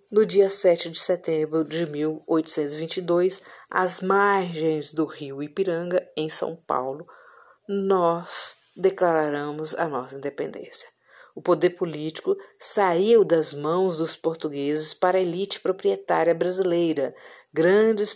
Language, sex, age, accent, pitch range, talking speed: Portuguese, female, 50-69, Brazilian, 160-220 Hz, 110 wpm